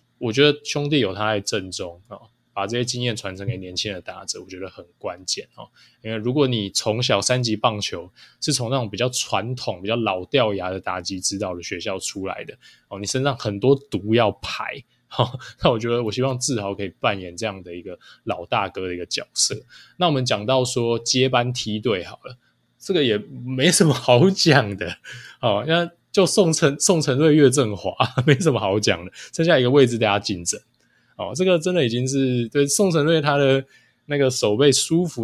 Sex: male